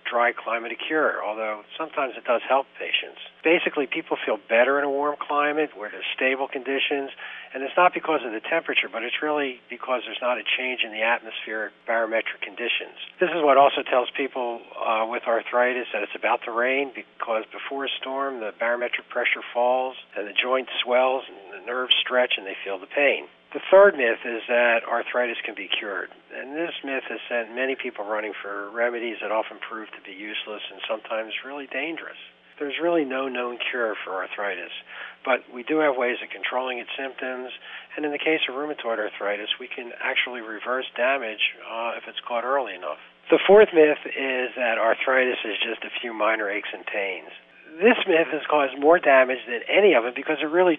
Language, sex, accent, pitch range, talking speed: English, male, American, 120-150 Hz, 195 wpm